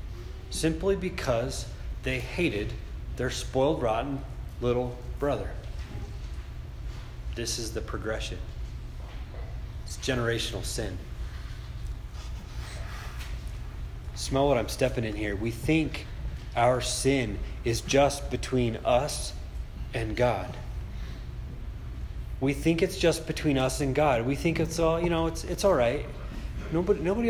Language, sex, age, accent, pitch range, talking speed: English, male, 30-49, American, 95-150 Hz, 115 wpm